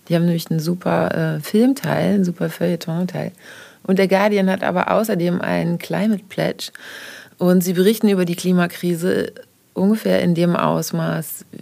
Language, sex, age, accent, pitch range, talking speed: German, female, 30-49, German, 160-195 Hz, 150 wpm